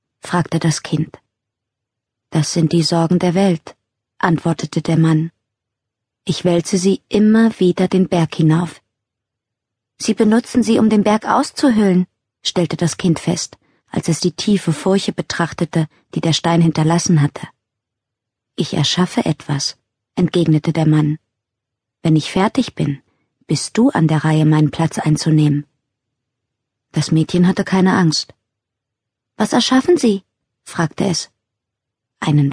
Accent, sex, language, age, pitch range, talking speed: German, female, German, 20-39, 130-185 Hz, 130 wpm